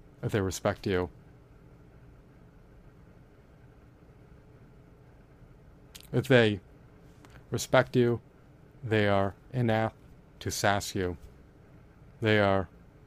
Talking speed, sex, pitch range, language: 75 wpm, male, 100-120 Hz, English